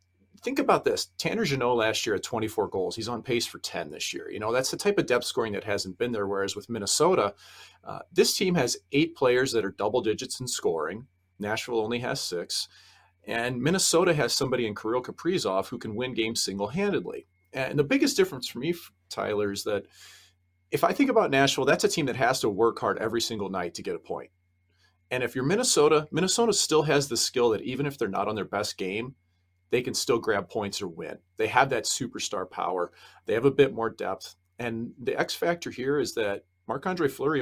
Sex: male